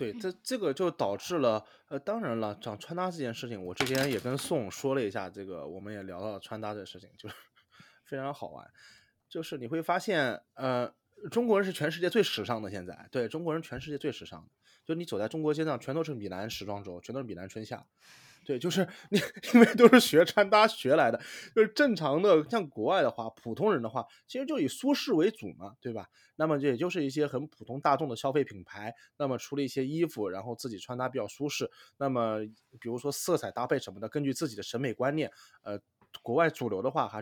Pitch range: 115-180 Hz